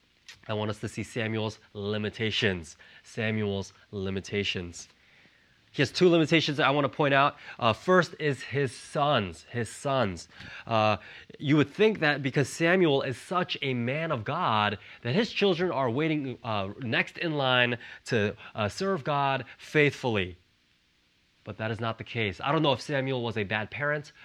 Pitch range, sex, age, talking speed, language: 105-145 Hz, male, 20-39, 170 wpm, English